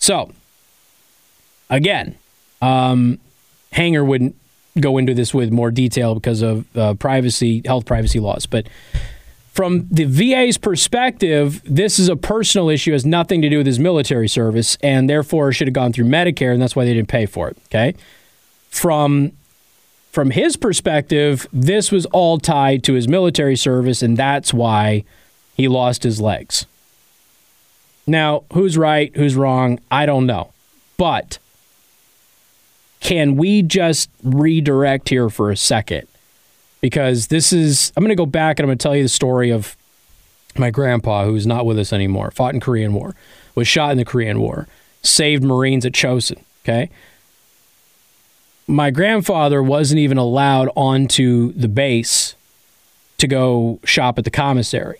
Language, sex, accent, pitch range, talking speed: English, male, American, 120-155 Hz, 155 wpm